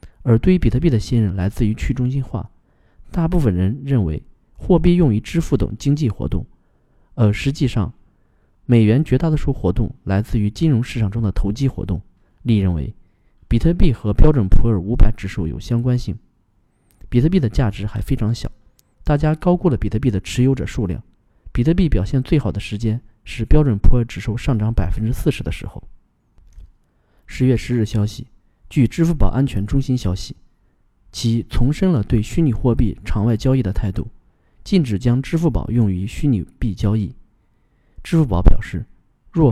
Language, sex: Chinese, male